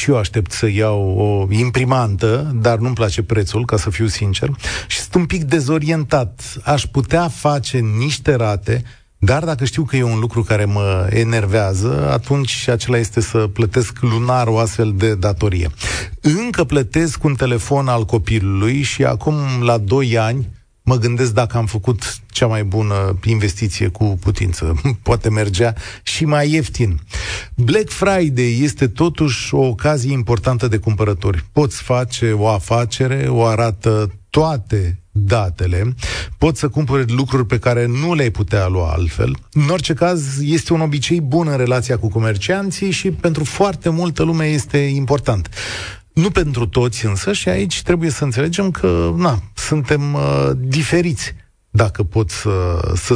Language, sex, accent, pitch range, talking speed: Romanian, male, native, 105-140 Hz, 150 wpm